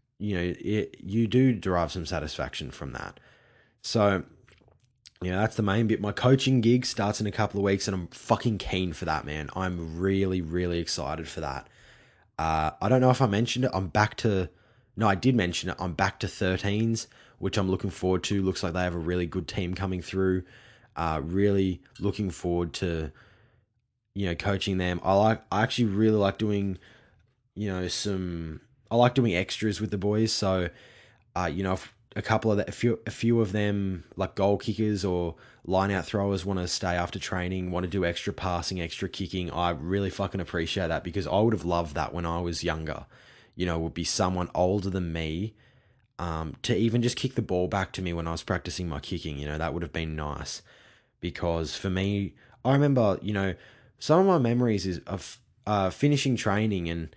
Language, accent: English, Australian